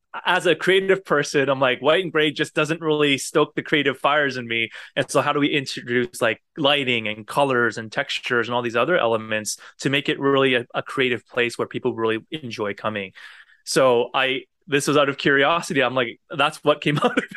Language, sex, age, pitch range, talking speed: English, male, 20-39, 115-150 Hz, 215 wpm